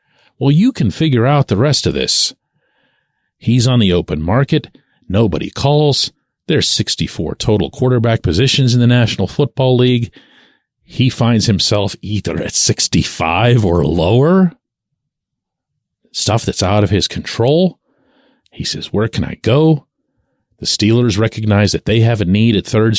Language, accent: English, American